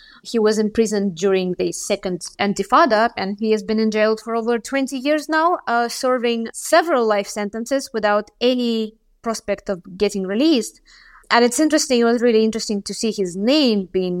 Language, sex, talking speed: English, female, 175 wpm